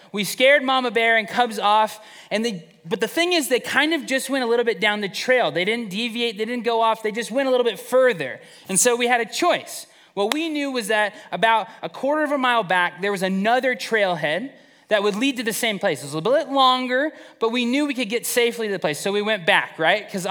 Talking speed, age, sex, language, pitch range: 265 wpm, 20-39, male, English, 190-255 Hz